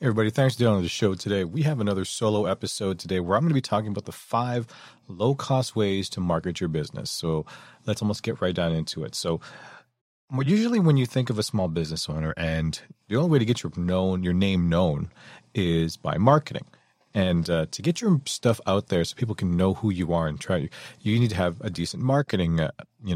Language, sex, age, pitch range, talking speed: English, male, 30-49, 85-120 Hz, 225 wpm